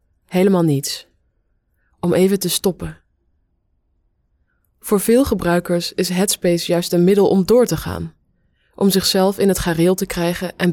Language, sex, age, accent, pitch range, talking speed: English, female, 20-39, Dutch, 165-195 Hz, 145 wpm